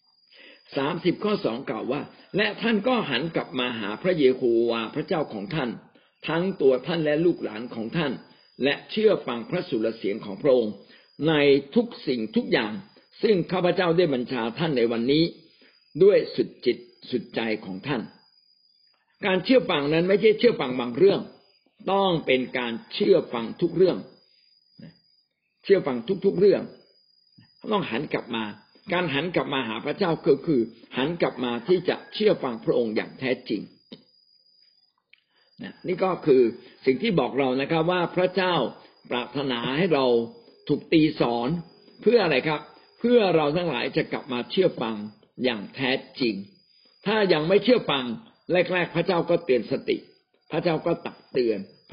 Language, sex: Thai, male